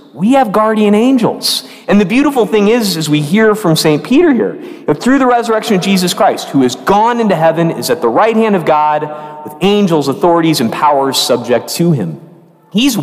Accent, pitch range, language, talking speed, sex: American, 150-210 Hz, English, 210 wpm, male